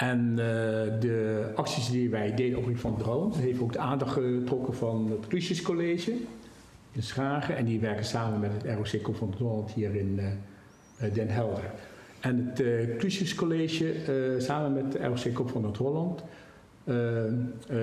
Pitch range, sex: 110-140 Hz, male